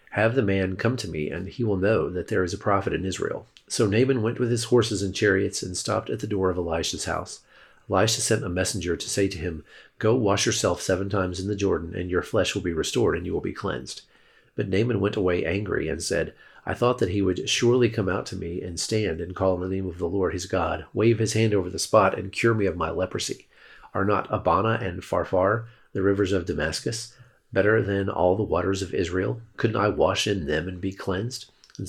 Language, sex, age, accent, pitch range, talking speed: English, male, 40-59, American, 90-110 Hz, 235 wpm